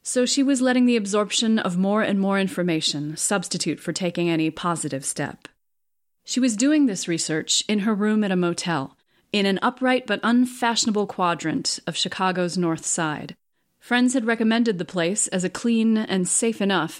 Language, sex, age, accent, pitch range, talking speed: English, female, 30-49, American, 170-215 Hz, 175 wpm